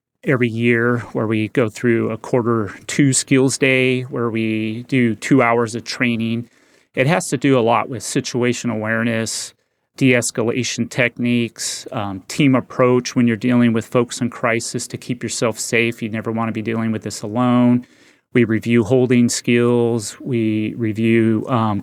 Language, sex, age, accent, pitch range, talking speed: English, male, 30-49, American, 115-125 Hz, 160 wpm